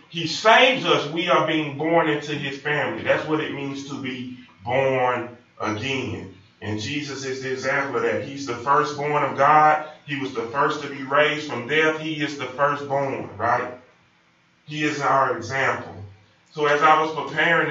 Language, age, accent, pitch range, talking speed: English, 30-49, American, 120-150 Hz, 180 wpm